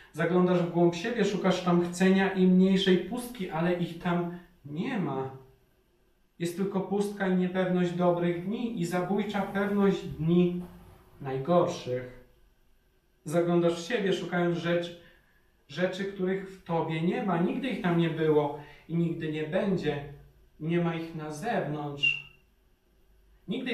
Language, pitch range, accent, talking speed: Polish, 150-185 Hz, native, 130 wpm